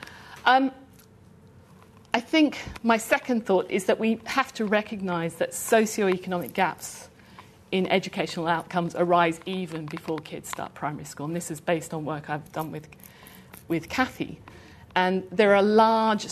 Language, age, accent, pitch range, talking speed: English, 50-69, British, 170-210 Hz, 145 wpm